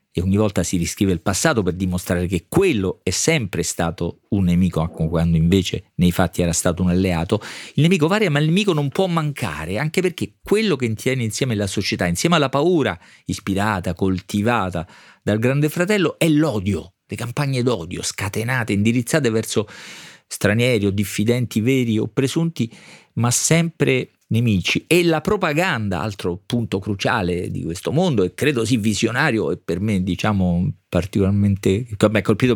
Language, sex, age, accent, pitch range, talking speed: Italian, male, 40-59, native, 95-145 Hz, 160 wpm